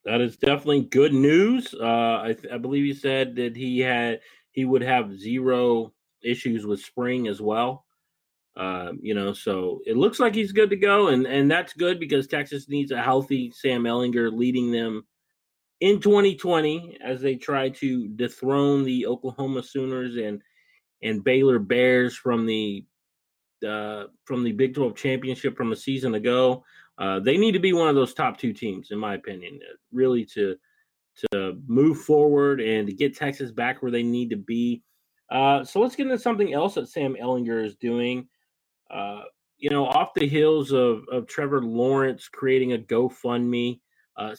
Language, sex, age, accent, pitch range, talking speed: English, male, 30-49, American, 115-140 Hz, 175 wpm